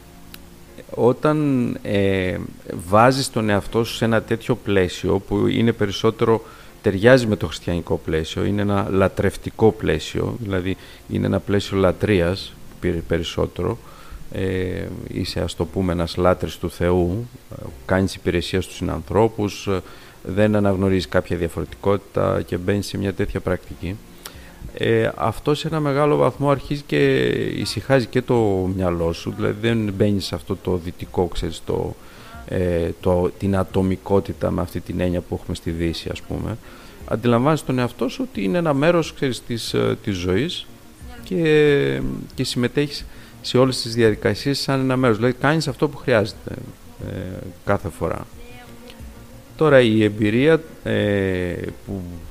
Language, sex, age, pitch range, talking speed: Greek, male, 50-69, 90-120 Hz, 140 wpm